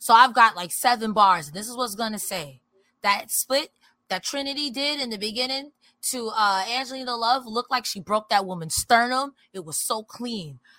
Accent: American